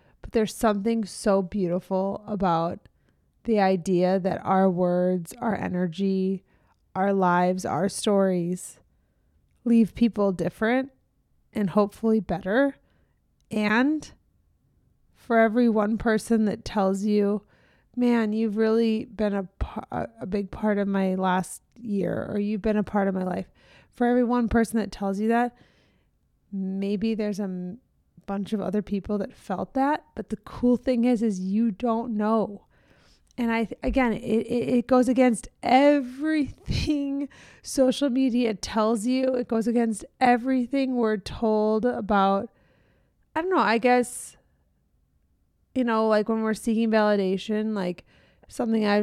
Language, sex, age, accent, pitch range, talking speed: English, female, 20-39, American, 195-235 Hz, 140 wpm